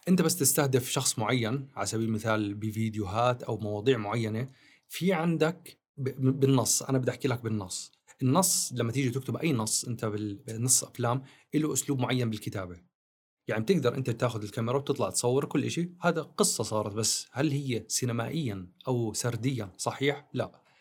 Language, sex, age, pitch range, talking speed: Arabic, male, 30-49, 115-145 Hz, 155 wpm